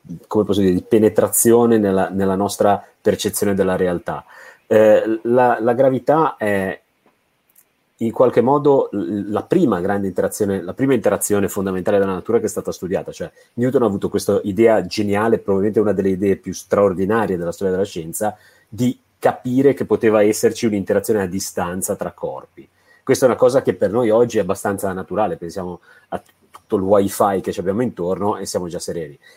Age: 30-49